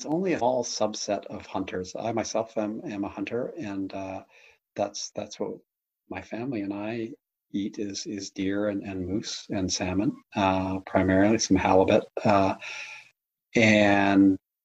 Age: 40-59